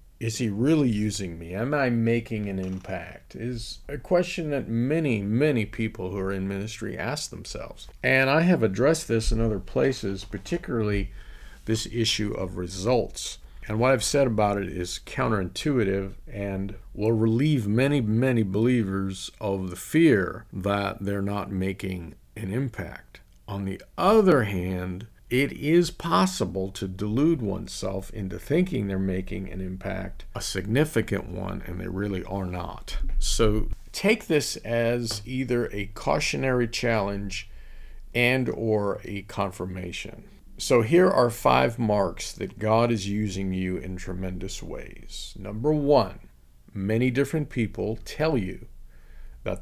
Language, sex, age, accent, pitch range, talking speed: English, male, 50-69, American, 95-120 Hz, 140 wpm